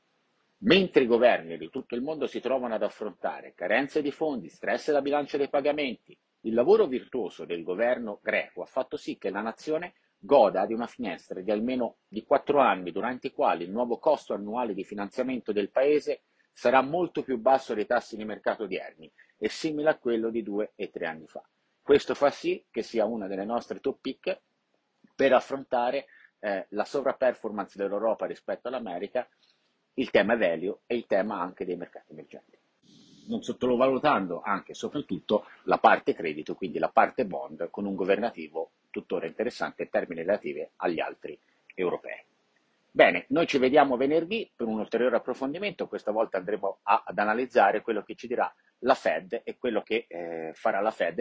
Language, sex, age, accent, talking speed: Italian, male, 50-69, native, 175 wpm